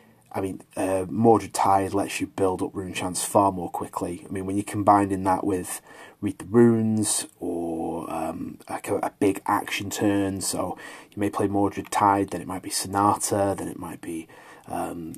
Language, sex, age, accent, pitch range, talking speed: English, male, 30-49, British, 95-110 Hz, 190 wpm